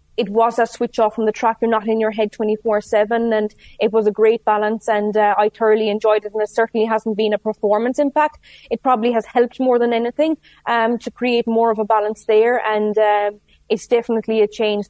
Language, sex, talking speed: English, female, 220 wpm